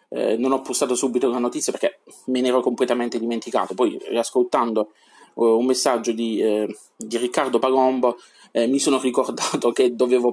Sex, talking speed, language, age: male, 170 wpm, Italian, 20-39